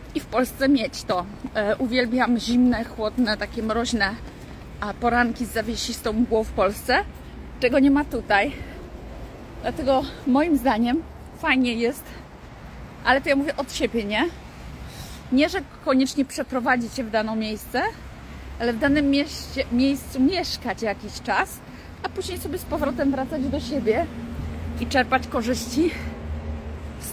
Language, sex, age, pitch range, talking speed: Polish, female, 30-49, 220-270 Hz, 135 wpm